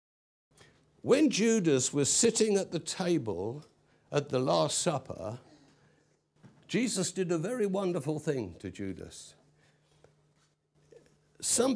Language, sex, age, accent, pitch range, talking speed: English, male, 60-79, British, 135-190 Hz, 100 wpm